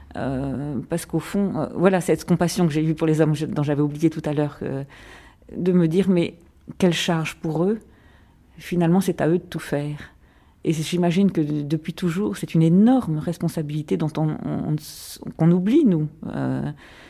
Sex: female